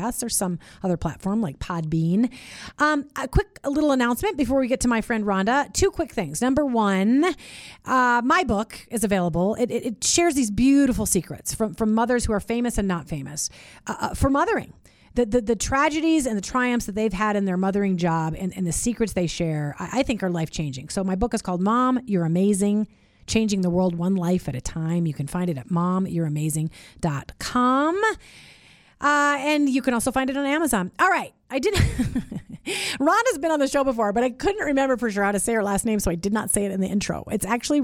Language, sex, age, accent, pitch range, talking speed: English, female, 30-49, American, 190-265 Hz, 215 wpm